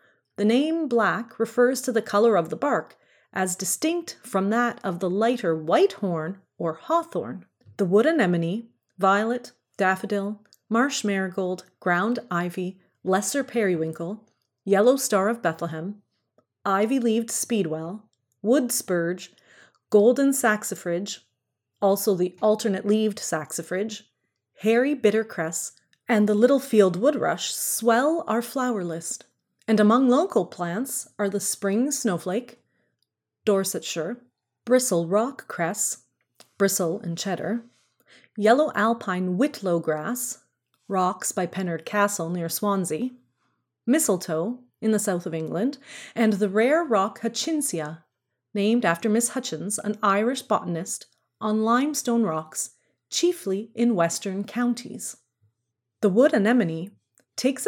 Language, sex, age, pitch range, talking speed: English, female, 30-49, 180-235 Hz, 115 wpm